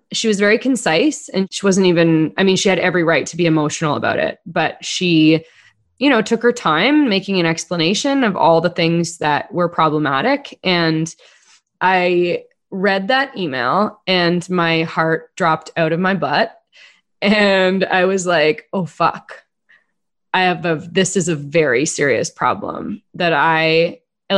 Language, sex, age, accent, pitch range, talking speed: English, female, 20-39, American, 170-225 Hz, 165 wpm